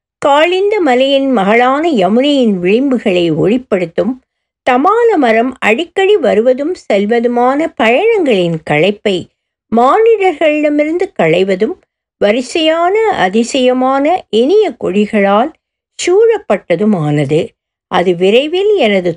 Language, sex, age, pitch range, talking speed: Tamil, female, 60-79, 205-320 Hz, 70 wpm